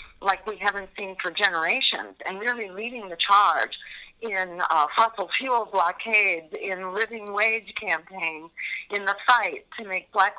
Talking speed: 150 wpm